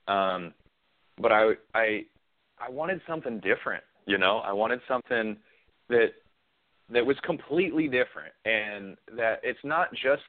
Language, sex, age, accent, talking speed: English, male, 30-49, American, 135 wpm